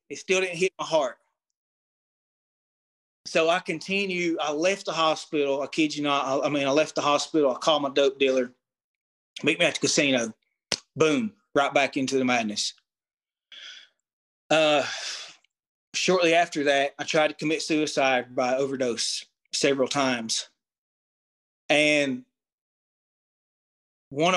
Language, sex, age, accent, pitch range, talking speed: English, male, 30-49, American, 135-160 Hz, 135 wpm